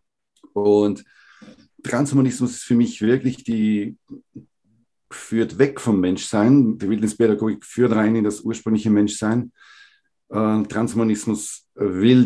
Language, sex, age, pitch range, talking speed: German, male, 50-69, 95-115 Hz, 110 wpm